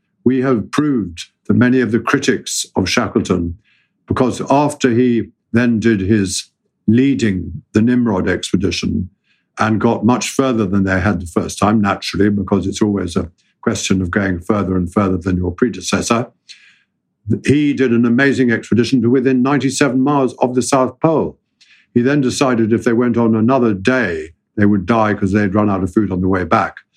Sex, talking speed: male, 175 wpm